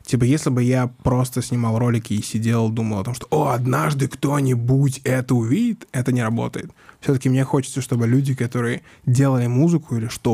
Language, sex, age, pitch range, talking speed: Russian, male, 20-39, 120-145 Hz, 180 wpm